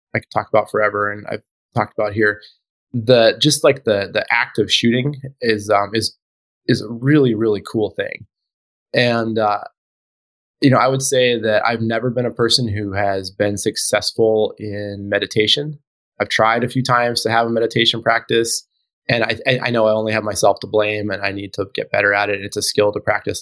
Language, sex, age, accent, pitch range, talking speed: English, male, 20-39, American, 105-120 Hz, 200 wpm